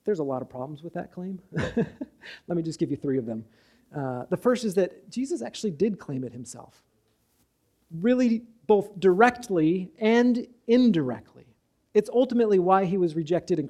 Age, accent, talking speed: 40-59, American, 170 wpm